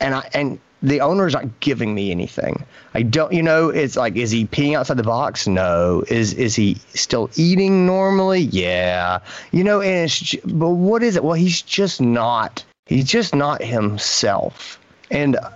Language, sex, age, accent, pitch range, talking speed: English, male, 30-49, American, 115-175 Hz, 180 wpm